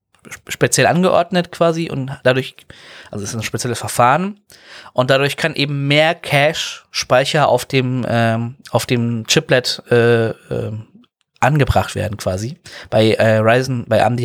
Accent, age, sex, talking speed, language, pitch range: German, 20-39, male, 140 wpm, German, 115-145 Hz